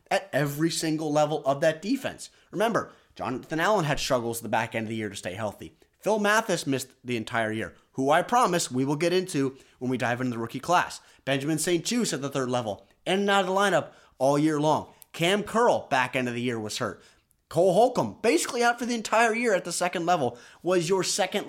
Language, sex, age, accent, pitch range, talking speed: English, male, 30-49, American, 130-195 Hz, 230 wpm